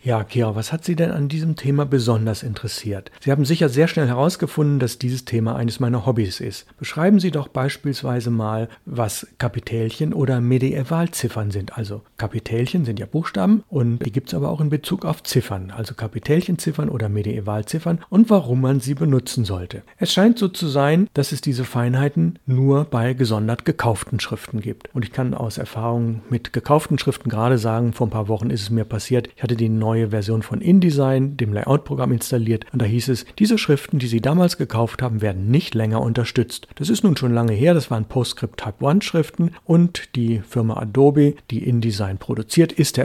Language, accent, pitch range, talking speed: German, German, 115-150 Hz, 190 wpm